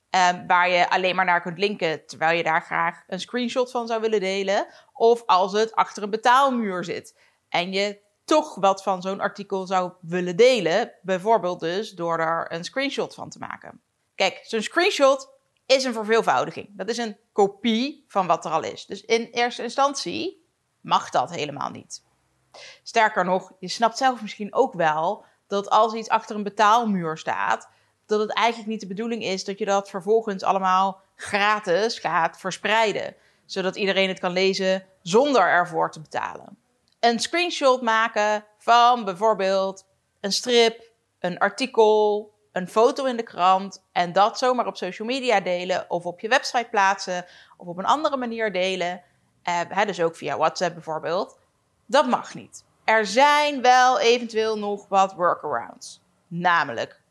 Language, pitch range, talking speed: Dutch, 185-230 Hz, 160 wpm